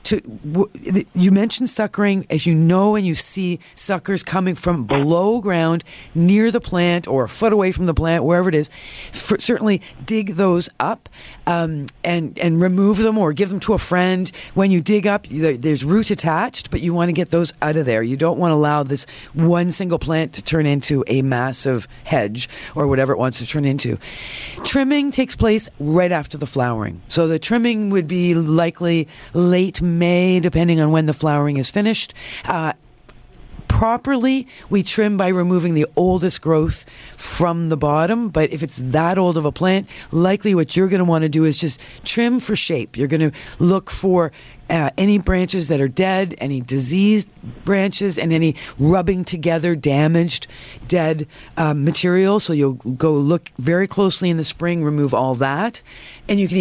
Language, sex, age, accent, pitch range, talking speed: English, female, 50-69, American, 150-190 Hz, 190 wpm